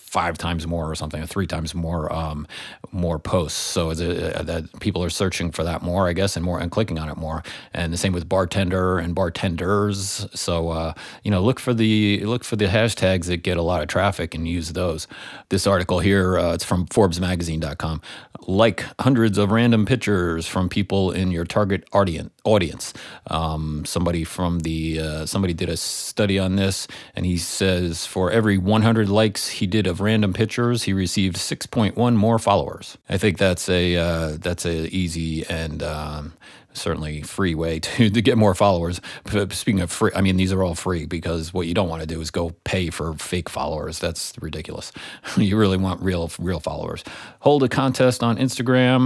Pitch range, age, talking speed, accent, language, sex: 85-100 Hz, 30-49, 195 wpm, American, English, male